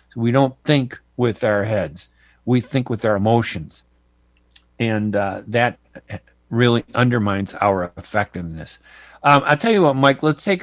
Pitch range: 100-120 Hz